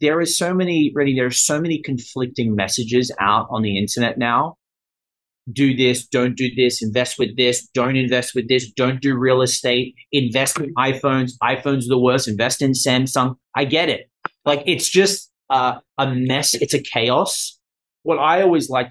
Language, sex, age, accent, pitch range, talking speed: English, male, 30-49, Australian, 115-140 Hz, 185 wpm